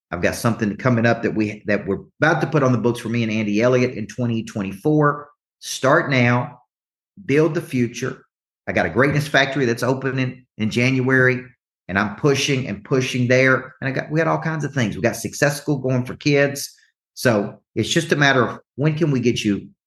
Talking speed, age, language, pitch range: 205 wpm, 40-59, English, 105-135 Hz